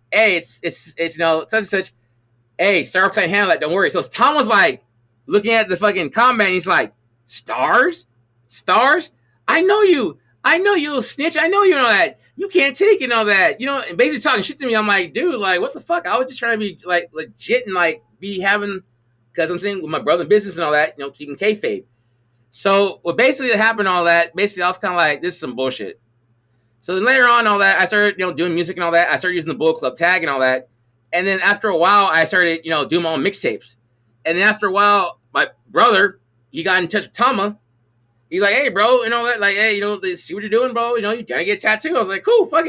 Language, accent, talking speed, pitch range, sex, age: English, American, 265 wpm, 145-220 Hz, male, 20-39